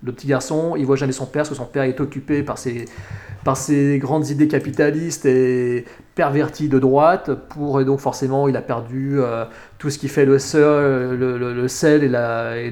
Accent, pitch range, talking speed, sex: French, 125-150 Hz, 215 wpm, male